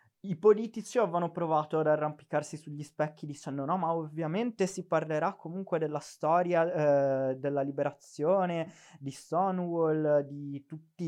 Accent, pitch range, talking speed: native, 130-165 Hz, 130 wpm